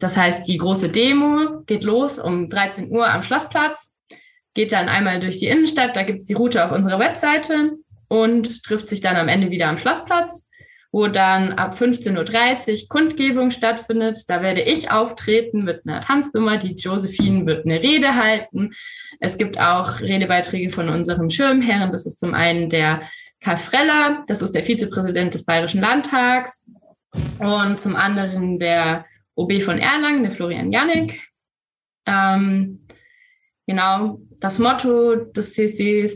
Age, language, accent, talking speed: 20-39, German, German, 150 wpm